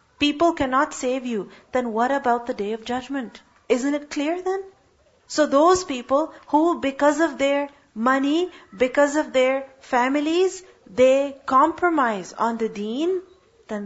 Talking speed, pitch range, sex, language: 145 wpm, 220-290 Hz, female, English